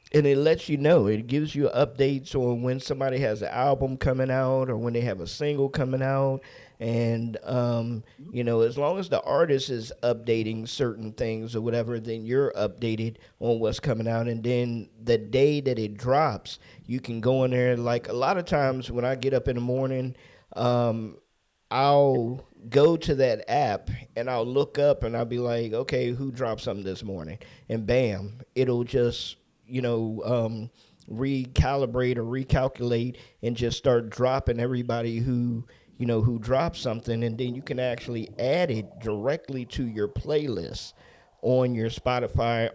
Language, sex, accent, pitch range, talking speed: English, male, American, 115-130 Hz, 175 wpm